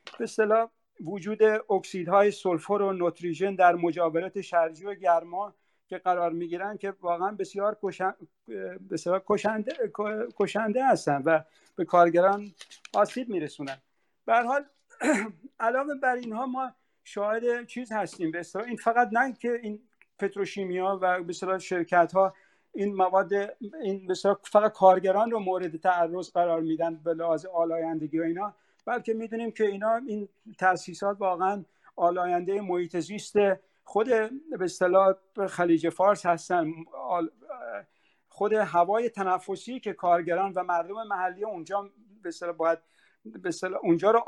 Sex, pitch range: male, 175-210 Hz